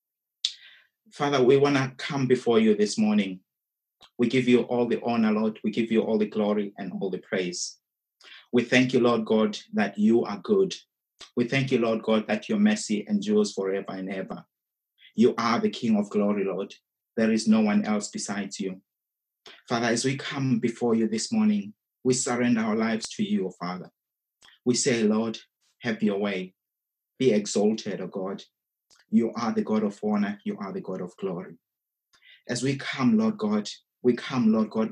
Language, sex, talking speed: English, male, 185 wpm